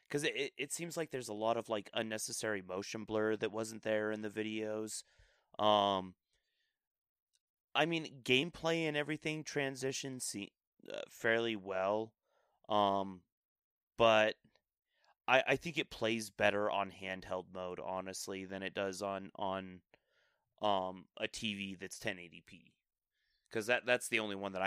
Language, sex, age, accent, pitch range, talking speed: English, male, 30-49, American, 100-125 Hz, 145 wpm